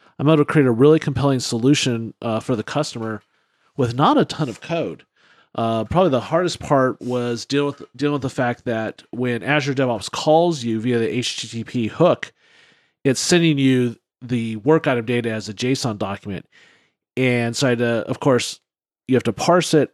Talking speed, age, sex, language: 190 wpm, 40-59, male, English